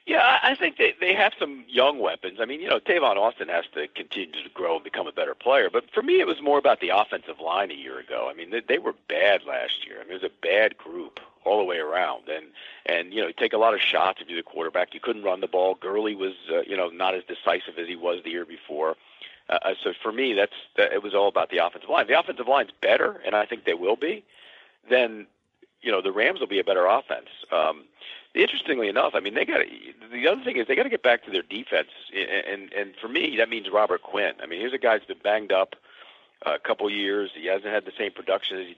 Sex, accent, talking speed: male, American, 265 wpm